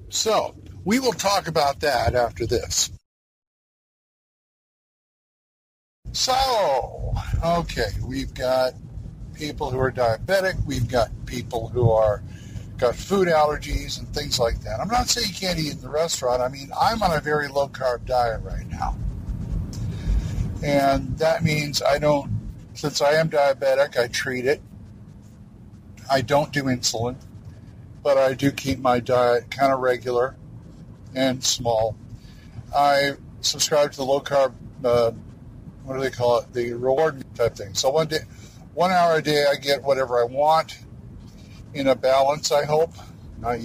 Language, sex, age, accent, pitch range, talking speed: English, male, 50-69, American, 115-145 Hz, 150 wpm